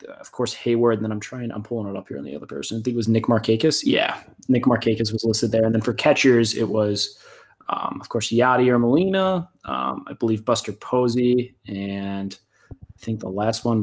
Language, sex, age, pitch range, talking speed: English, male, 20-39, 110-130 Hz, 220 wpm